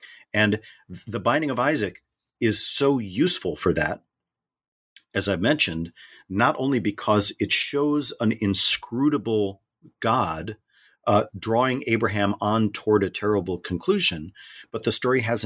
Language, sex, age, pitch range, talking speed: English, male, 40-59, 95-120 Hz, 130 wpm